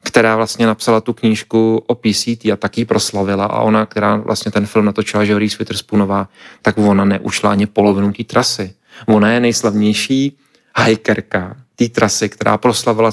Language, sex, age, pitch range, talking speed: Czech, male, 30-49, 105-120 Hz, 155 wpm